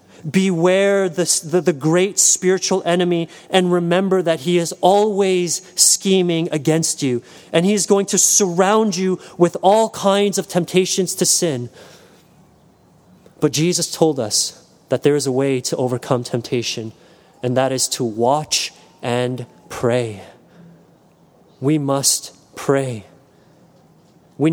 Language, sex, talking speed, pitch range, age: English, male, 130 wpm, 145-185 Hz, 30-49